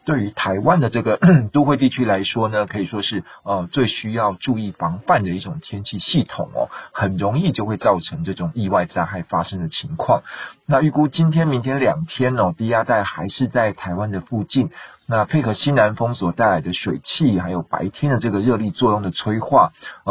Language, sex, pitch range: Chinese, male, 95-125 Hz